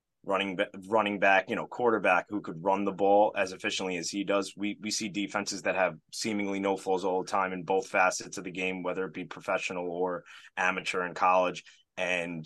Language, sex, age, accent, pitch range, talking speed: English, male, 20-39, American, 90-105 Hz, 205 wpm